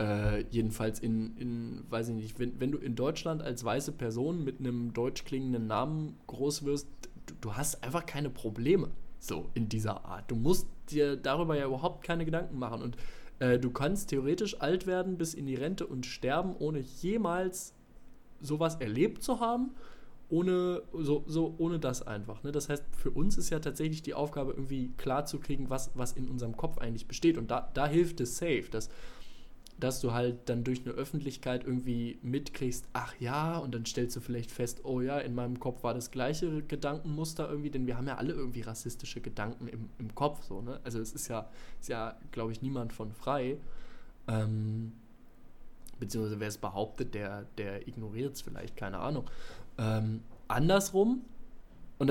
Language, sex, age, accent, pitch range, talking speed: German, male, 20-39, German, 120-155 Hz, 180 wpm